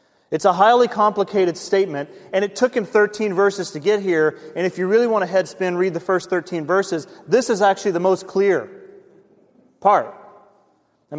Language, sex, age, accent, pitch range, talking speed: English, male, 30-49, American, 170-210 Hz, 190 wpm